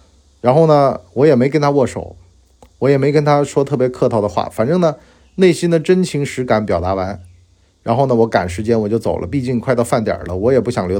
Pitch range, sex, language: 90-130 Hz, male, Chinese